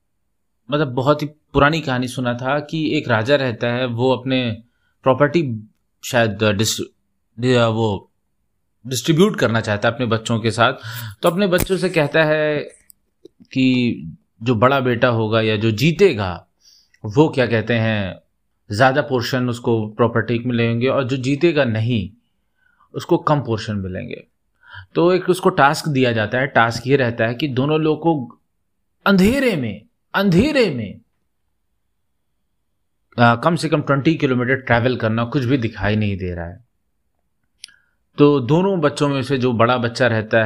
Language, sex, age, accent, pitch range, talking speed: Hindi, male, 30-49, native, 110-140 Hz, 145 wpm